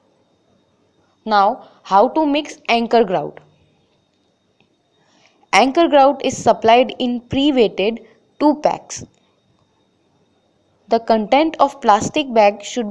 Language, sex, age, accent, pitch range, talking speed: English, female, 20-39, Indian, 210-275 Hz, 95 wpm